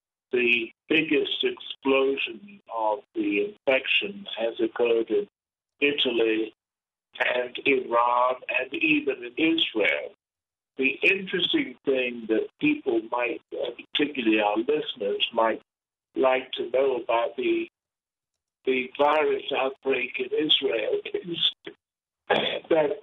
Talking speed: 100 wpm